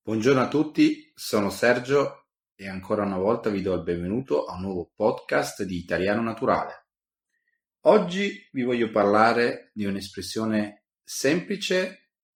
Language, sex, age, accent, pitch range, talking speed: Italian, male, 30-49, native, 95-115 Hz, 130 wpm